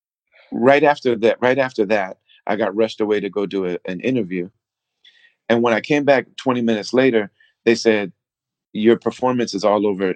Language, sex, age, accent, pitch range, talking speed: English, male, 40-59, American, 95-120 Hz, 185 wpm